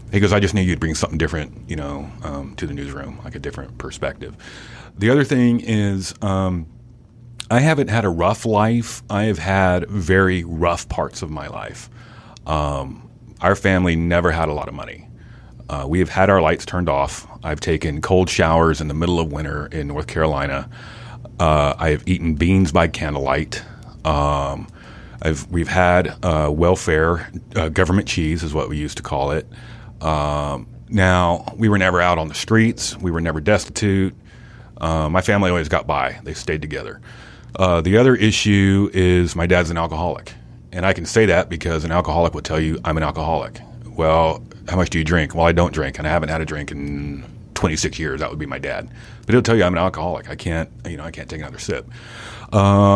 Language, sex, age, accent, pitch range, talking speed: English, male, 30-49, American, 80-105 Hz, 200 wpm